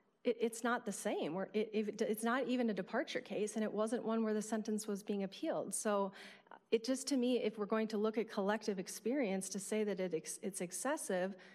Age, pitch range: 30-49, 195-240 Hz